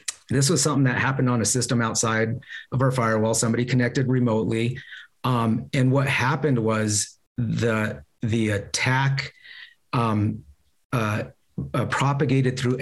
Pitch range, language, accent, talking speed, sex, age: 110-130 Hz, English, American, 130 wpm, male, 30-49